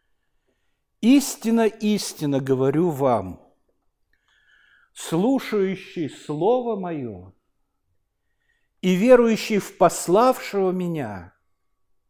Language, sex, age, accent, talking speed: Russian, male, 60-79, native, 60 wpm